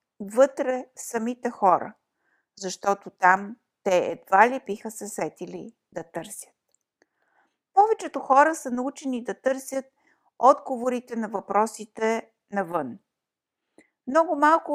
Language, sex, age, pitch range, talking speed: Bulgarian, female, 50-69, 220-270 Hz, 100 wpm